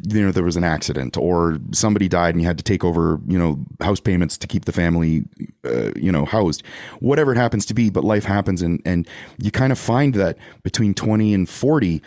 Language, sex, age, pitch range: English, male, 30-49, 90-140 Hz